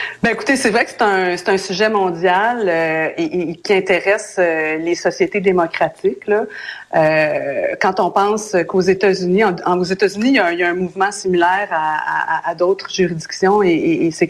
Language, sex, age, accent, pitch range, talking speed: French, female, 40-59, Canadian, 175-205 Hz, 205 wpm